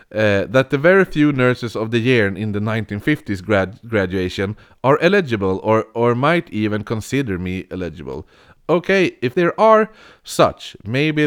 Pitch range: 100-140 Hz